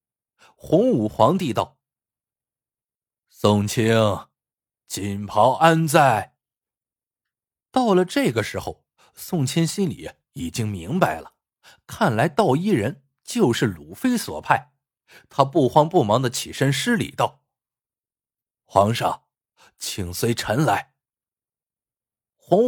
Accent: native